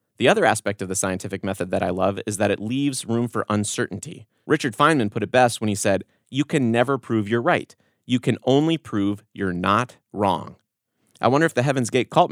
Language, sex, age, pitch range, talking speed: English, male, 30-49, 100-130 Hz, 220 wpm